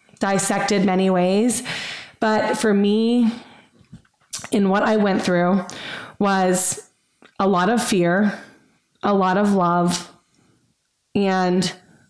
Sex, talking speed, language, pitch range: female, 105 wpm, English, 185-215 Hz